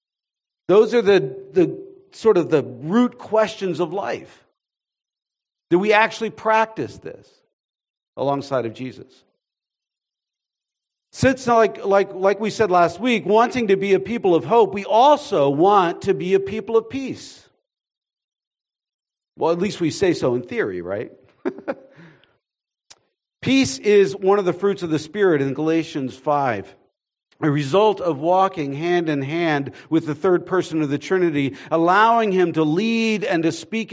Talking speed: 150 wpm